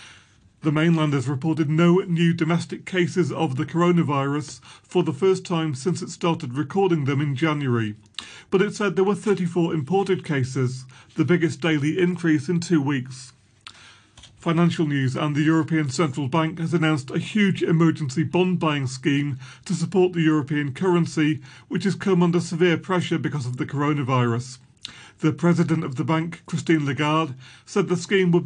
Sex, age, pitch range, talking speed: male, 40-59, 125-165 Hz, 160 wpm